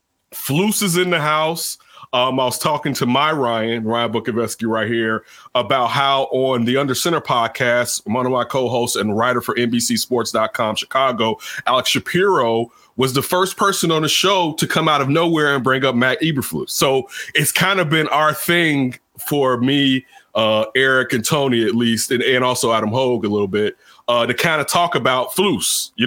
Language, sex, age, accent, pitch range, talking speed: English, male, 30-49, American, 120-150 Hz, 190 wpm